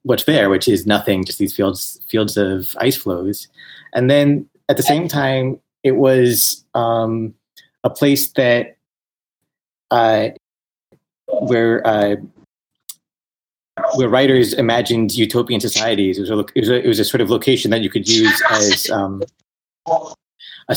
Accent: American